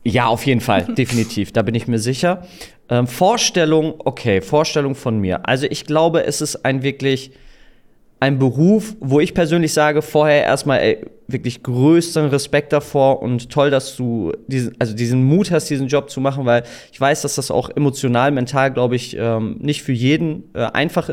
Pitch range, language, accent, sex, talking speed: 125-150 Hz, German, German, male, 185 wpm